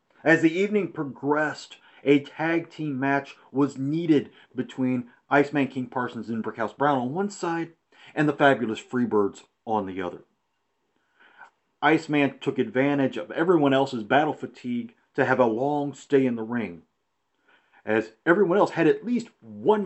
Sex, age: male, 40-59